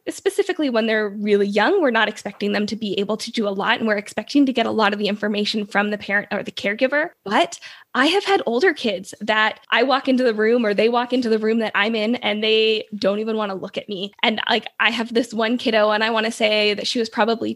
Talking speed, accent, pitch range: 265 wpm, American, 210-250 Hz